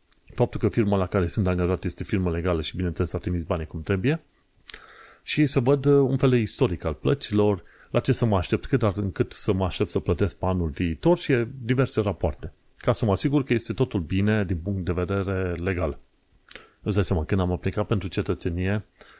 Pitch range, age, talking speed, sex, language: 90-110 Hz, 30-49, 205 wpm, male, Romanian